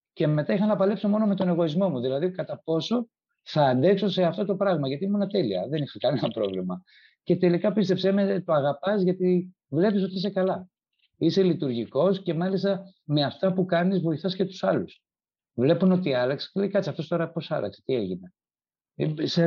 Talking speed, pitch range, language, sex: 190 wpm, 140-190 Hz, Greek, male